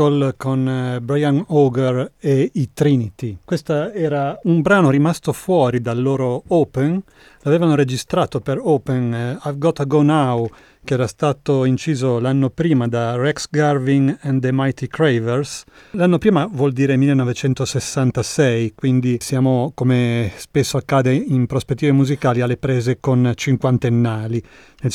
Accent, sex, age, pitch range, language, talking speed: native, male, 30-49, 125-150 Hz, Italian, 135 wpm